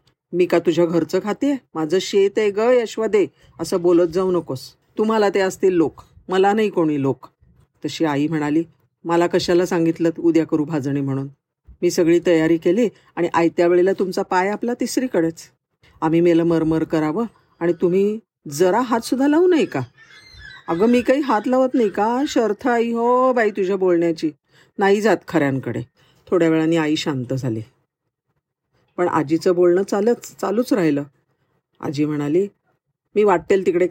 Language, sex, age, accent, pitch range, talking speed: Marathi, female, 50-69, native, 150-200 Hz, 155 wpm